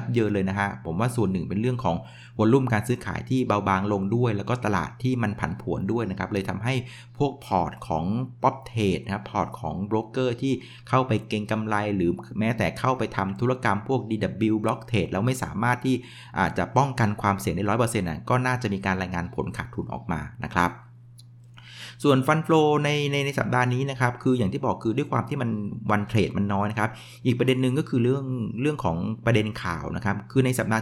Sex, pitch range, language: male, 100-125 Hz, Thai